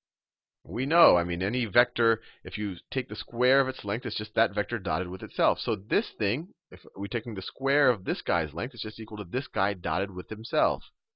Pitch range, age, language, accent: 95-125 Hz, 30-49, English, American